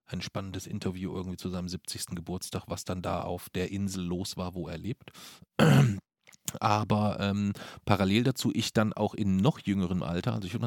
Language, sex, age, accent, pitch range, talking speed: German, male, 40-59, German, 90-105 Hz, 185 wpm